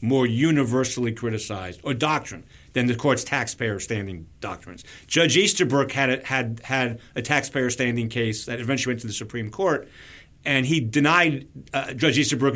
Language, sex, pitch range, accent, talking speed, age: English, male, 115-150 Hz, American, 160 wpm, 40-59